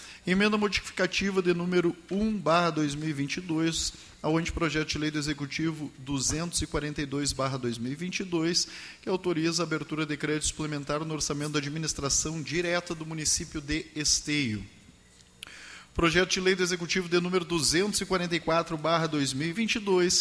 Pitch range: 155-185 Hz